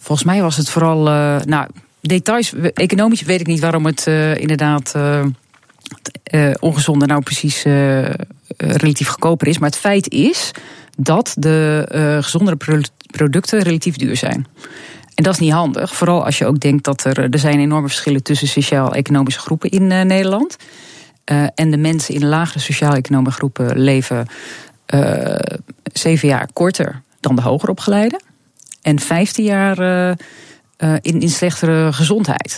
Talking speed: 155 wpm